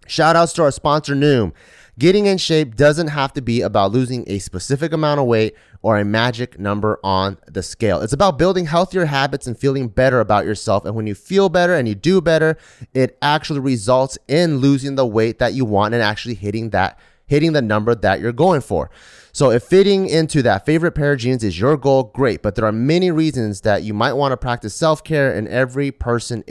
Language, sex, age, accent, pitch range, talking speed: English, male, 30-49, American, 110-160 Hz, 215 wpm